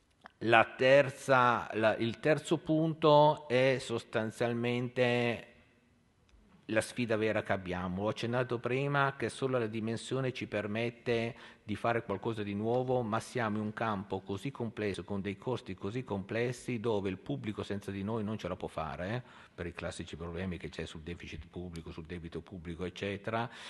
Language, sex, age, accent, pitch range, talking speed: Italian, male, 50-69, native, 90-110 Hz, 155 wpm